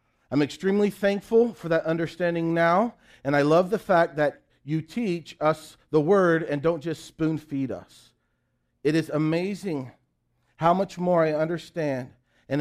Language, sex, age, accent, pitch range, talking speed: English, male, 40-59, American, 135-190 Hz, 155 wpm